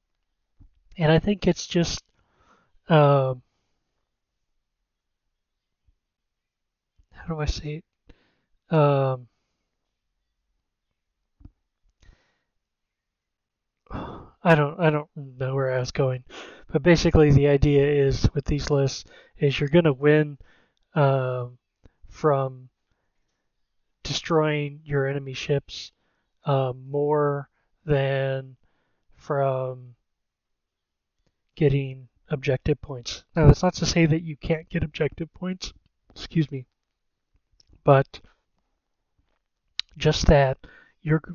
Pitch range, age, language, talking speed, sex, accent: 130-150 Hz, 20-39, English, 90 wpm, male, American